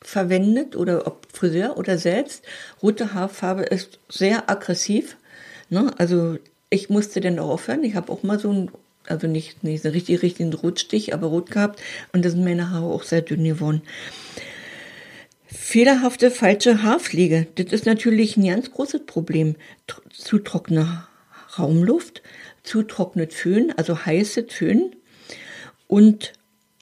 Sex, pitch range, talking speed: female, 170-215 Hz, 140 wpm